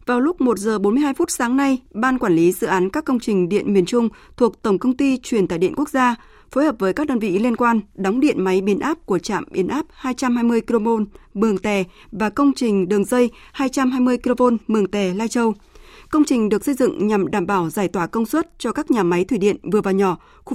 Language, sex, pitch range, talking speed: Vietnamese, female, 200-260 Hz, 240 wpm